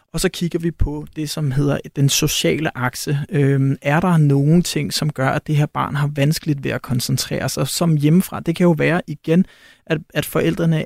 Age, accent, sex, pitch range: 30-49, native, male, 140-175 Hz